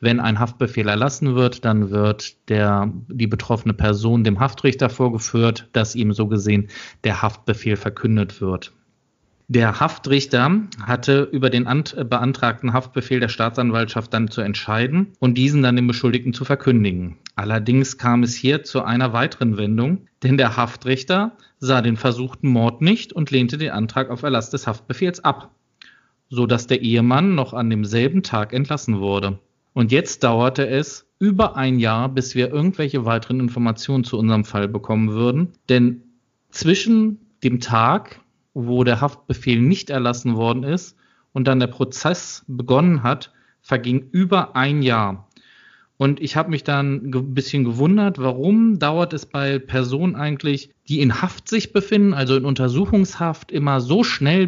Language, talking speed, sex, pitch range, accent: German, 155 wpm, male, 120-140 Hz, German